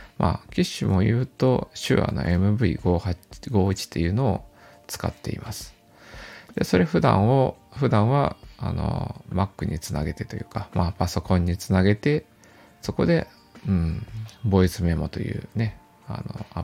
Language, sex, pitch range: Japanese, male, 90-125 Hz